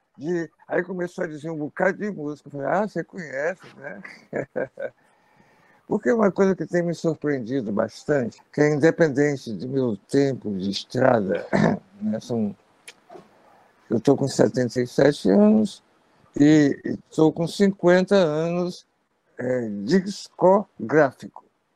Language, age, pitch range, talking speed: Portuguese, 60-79, 135-185 Hz, 125 wpm